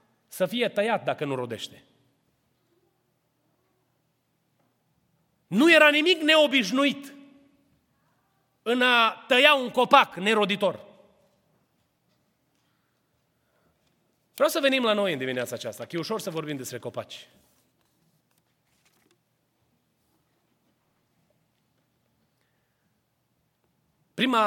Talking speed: 80 wpm